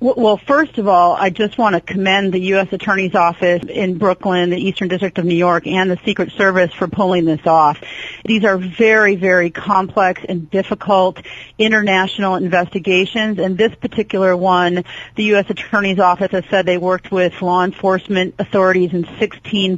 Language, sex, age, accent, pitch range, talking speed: English, female, 40-59, American, 175-200 Hz, 170 wpm